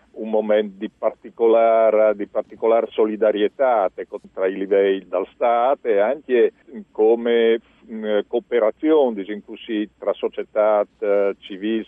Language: Italian